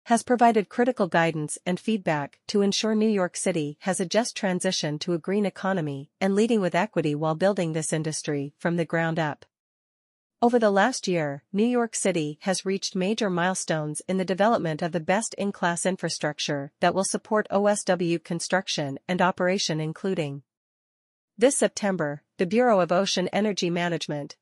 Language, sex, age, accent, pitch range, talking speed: English, female, 40-59, American, 165-200 Hz, 160 wpm